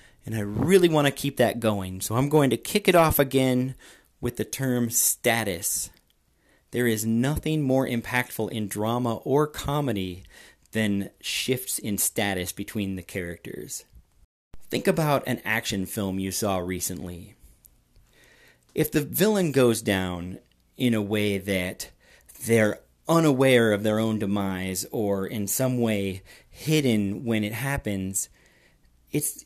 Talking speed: 140 wpm